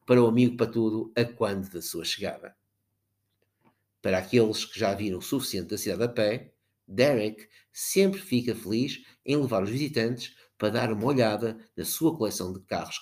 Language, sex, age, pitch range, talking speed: Portuguese, male, 50-69, 100-125 Hz, 175 wpm